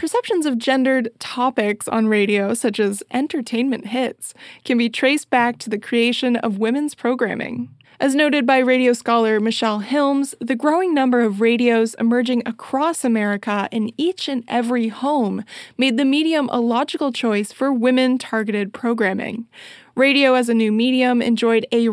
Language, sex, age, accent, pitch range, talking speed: English, female, 20-39, American, 225-270 Hz, 155 wpm